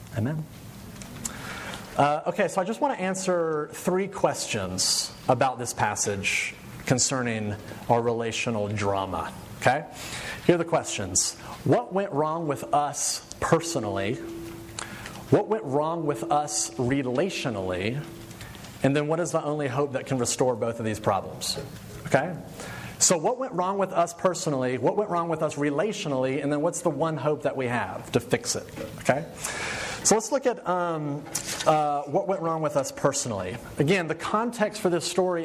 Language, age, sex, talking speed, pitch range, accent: English, 30-49, male, 160 wpm, 140-185 Hz, American